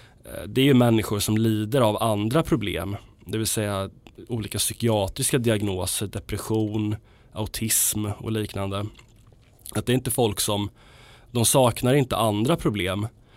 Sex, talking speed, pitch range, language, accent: male, 135 wpm, 105-120 Hz, Swedish, native